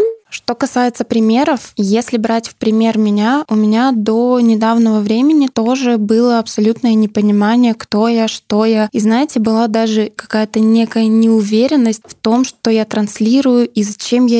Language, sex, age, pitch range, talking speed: Russian, female, 10-29, 215-240 Hz, 150 wpm